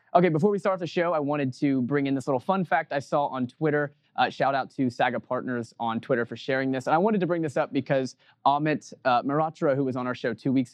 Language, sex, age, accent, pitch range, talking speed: English, male, 20-39, American, 120-145 Hz, 265 wpm